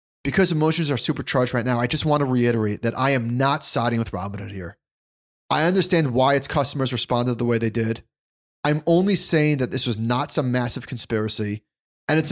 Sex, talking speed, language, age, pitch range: male, 200 wpm, English, 30-49, 110-145 Hz